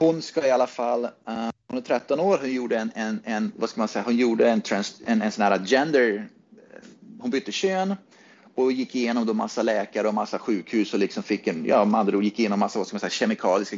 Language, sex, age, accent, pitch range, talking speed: Swedish, male, 30-49, native, 105-160 Hz, 185 wpm